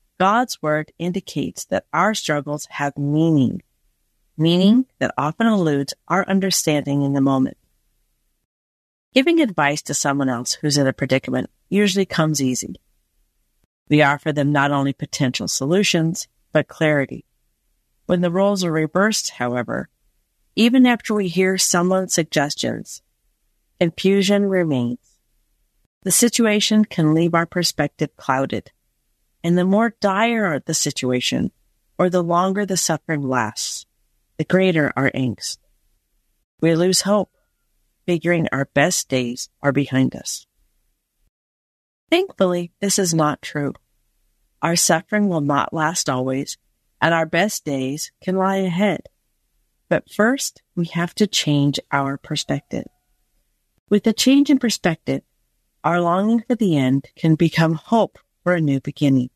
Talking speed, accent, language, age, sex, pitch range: 130 wpm, American, English, 40-59, female, 140-195 Hz